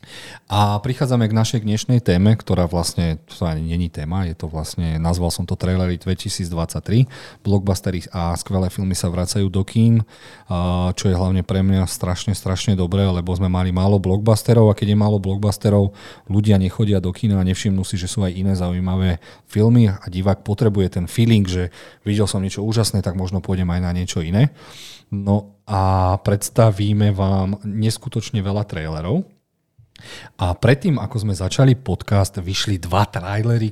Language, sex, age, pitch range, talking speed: Slovak, male, 40-59, 95-115 Hz, 165 wpm